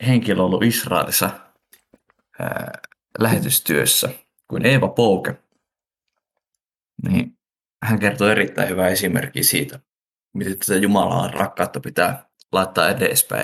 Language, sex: Finnish, male